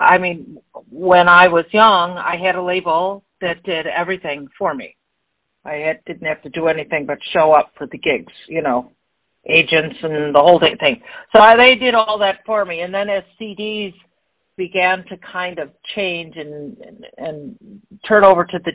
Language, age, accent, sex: English, 50-69, American, female